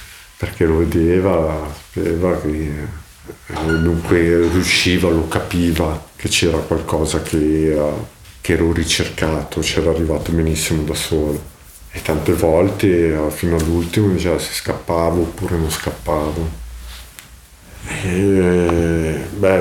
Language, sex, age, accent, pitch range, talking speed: Italian, male, 50-69, native, 80-90 Hz, 105 wpm